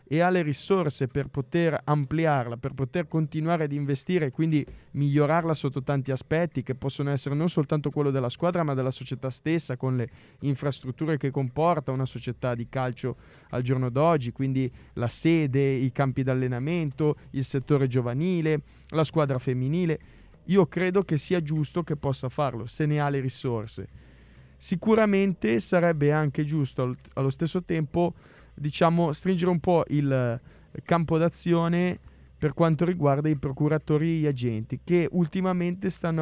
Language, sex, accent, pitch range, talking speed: Italian, male, native, 135-170 Hz, 150 wpm